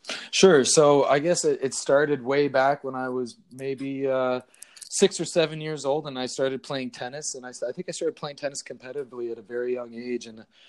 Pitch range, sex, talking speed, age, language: 120-135 Hz, male, 215 wpm, 20-39, English